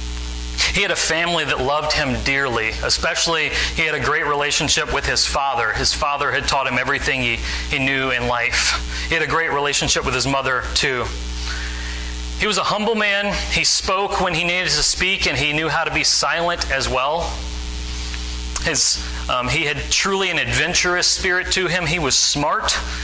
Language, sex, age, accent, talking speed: English, male, 30-49, American, 185 wpm